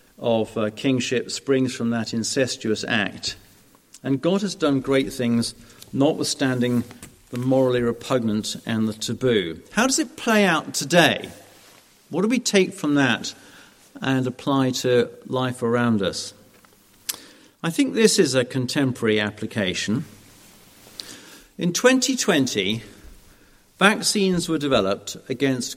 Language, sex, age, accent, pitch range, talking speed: English, male, 50-69, British, 110-150 Hz, 120 wpm